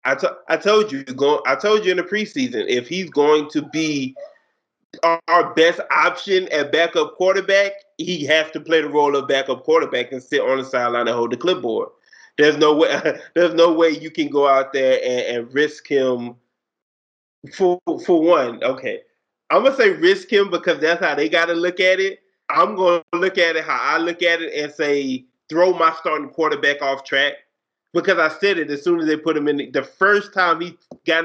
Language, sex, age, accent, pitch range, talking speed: English, male, 20-39, American, 145-190 Hz, 205 wpm